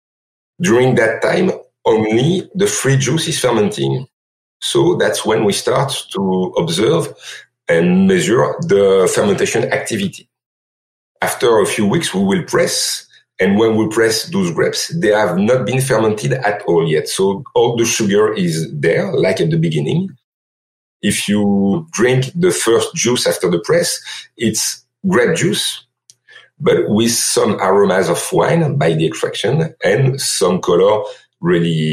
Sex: male